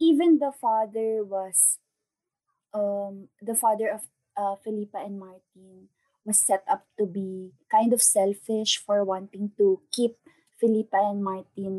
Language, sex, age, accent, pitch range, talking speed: English, female, 20-39, Filipino, 195-240 Hz, 135 wpm